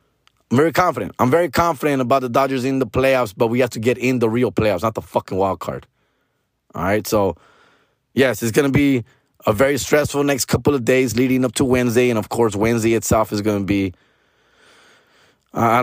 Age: 30-49